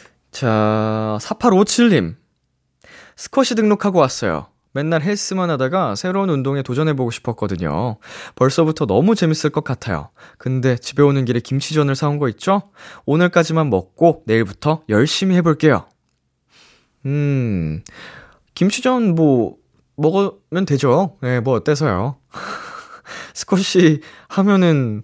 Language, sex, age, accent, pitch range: Korean, male, 20-39, native, 115-170 Hz